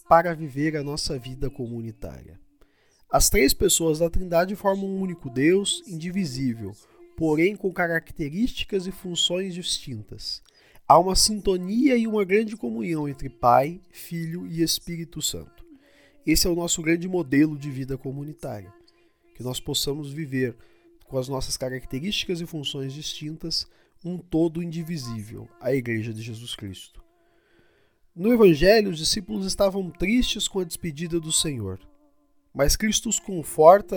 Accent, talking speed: Brazilian, 140 wpm